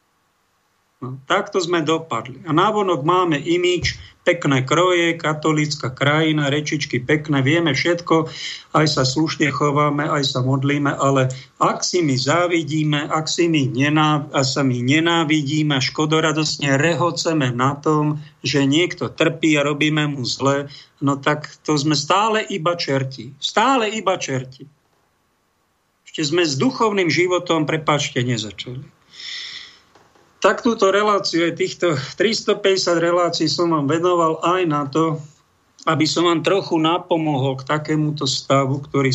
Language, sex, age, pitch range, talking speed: Slovak, male, 50-69, 135-165 Hz, 125 wpm